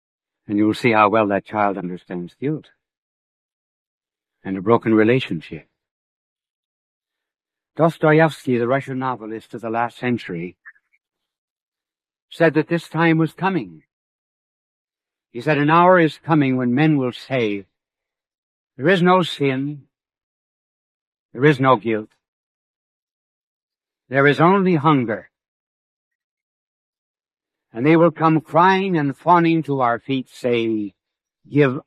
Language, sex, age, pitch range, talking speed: English, male, 60-79, 110-155 Hz, 115 wpm